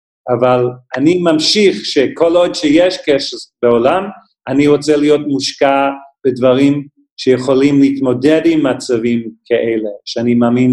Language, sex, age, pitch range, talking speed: Hebrew, male, 40-59, 125-170 Hz, 110 wpm